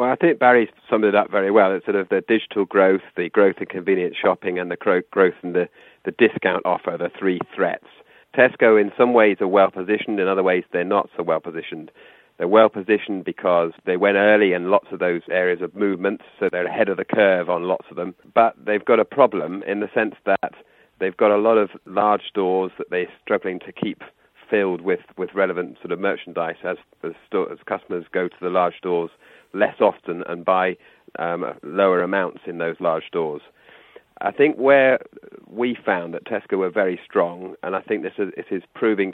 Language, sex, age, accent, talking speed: English, male, 40-59, British, 205 wpm